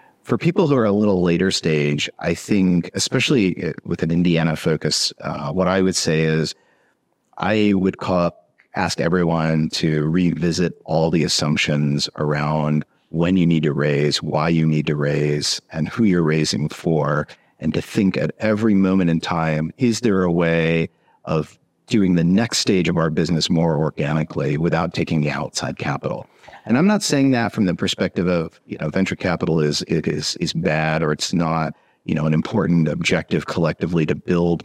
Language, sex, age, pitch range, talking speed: English, male, 50-69, 75-95 Hz, 175 wpm